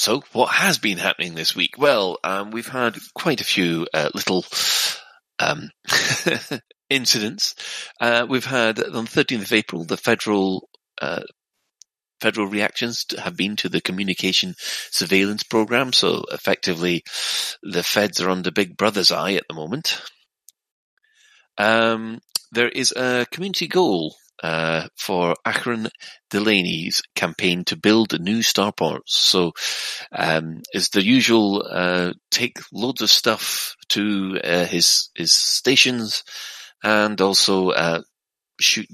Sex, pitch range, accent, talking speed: male, 90-120 Hz, British, 130 wpm